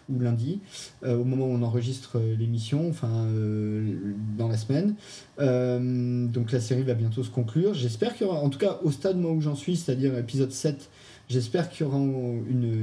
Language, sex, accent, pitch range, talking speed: French, male, French, 115-135 Hz, 190 wpm